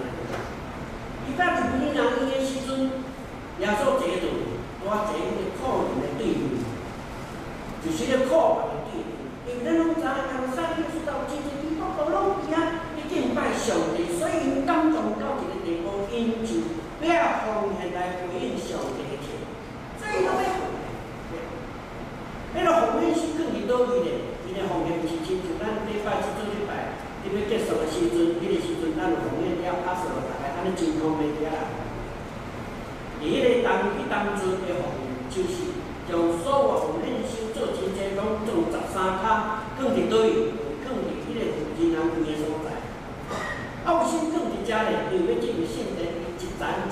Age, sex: 60-79, male